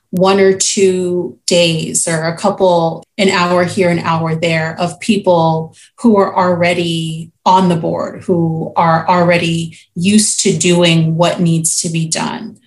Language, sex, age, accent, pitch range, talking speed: English, female, 30-49, American, 165-205 Hz, 150 wpm